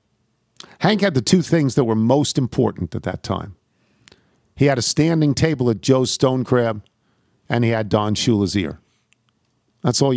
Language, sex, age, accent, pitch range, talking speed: English, male, 50-69, American, 110-155 Hz, 170 wpm